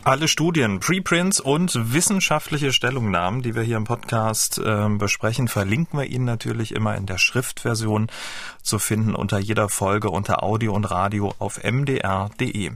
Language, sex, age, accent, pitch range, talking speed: German, male, 40-59, German, 105-135 Hz, 150 wpm